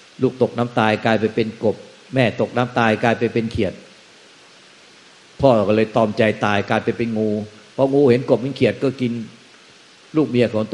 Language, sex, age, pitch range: Thai, male, 60-79, 110-125 Hz